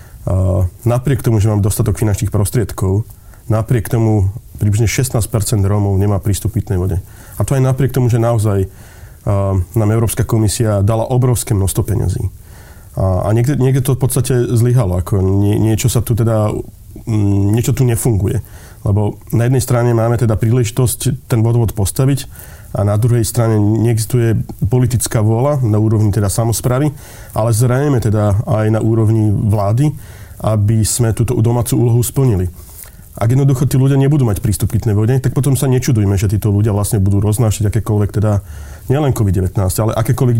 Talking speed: 160 wpm